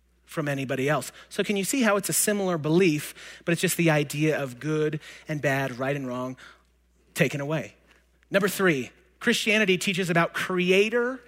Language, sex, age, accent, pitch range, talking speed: English, male, 30-49, American, 145-185 Hz, 170 wpm